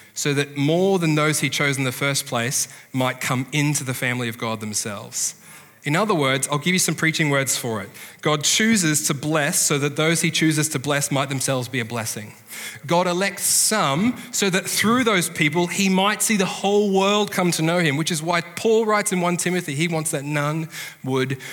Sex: male